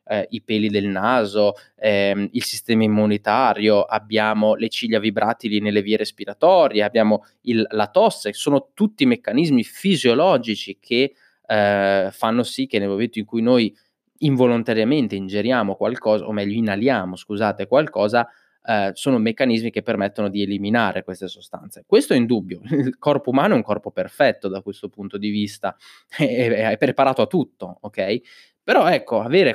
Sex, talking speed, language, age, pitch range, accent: male, 155 wpm, Italian, 20-39, 105-125 Hz, native